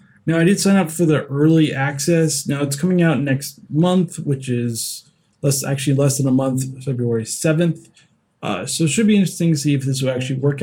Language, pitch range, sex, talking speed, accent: English, 125-160 Hz, male, 215 wpm, American